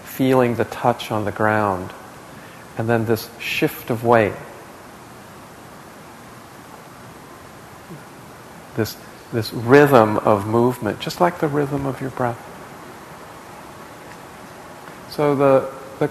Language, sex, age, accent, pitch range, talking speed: English, male, 50-69, American, 110-145 Hz, 100 wpm